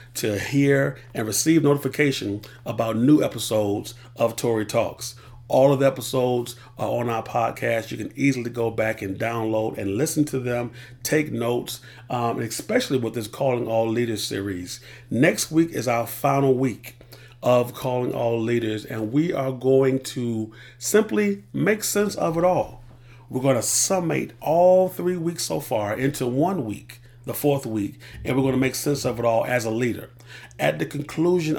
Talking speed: 175 wpm